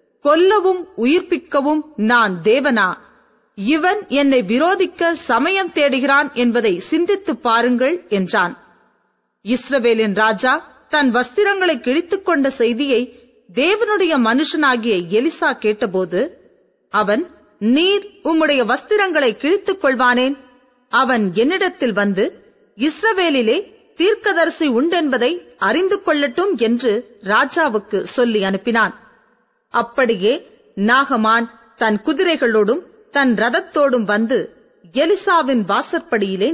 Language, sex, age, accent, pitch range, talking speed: Tamil, female, 30-49, native, 225-320 Hz, 85 wpm